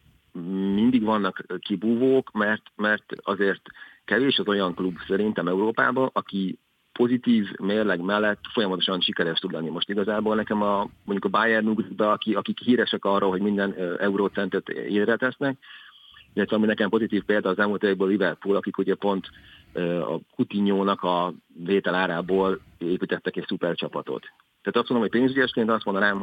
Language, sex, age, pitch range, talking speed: Hungarian, male, 40-59, 95-110 Hz, 140 wpm